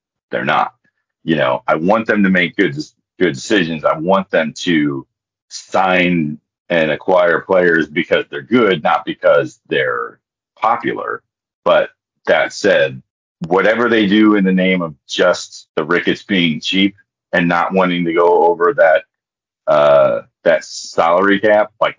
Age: 40-59